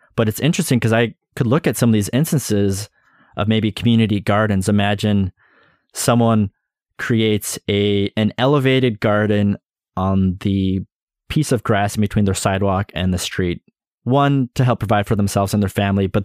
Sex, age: male, 20-39